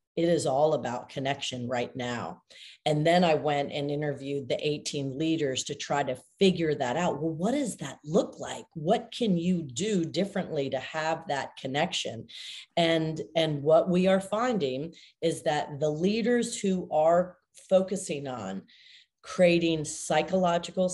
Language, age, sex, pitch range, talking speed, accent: English, 40-59, female, 140-175 Hz, 150 wpm, American